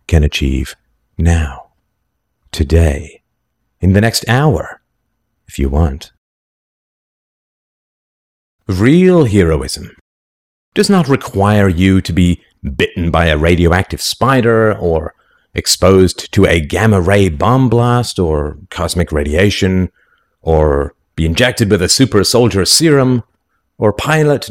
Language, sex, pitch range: English, male, 80-115 Hz